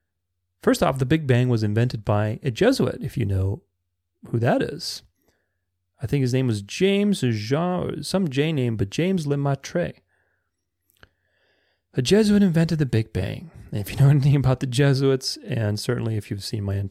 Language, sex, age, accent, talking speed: English, male, 30-49, American, 180 wpm